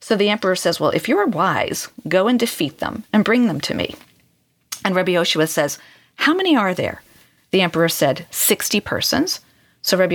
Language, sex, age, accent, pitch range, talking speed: English, female, 40-59, American, 160-210 Hz, 190 wpm